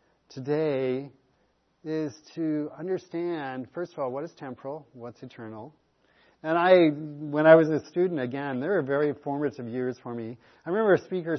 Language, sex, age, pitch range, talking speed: English, male, 40-59, 125-165 Hz, 165 wpm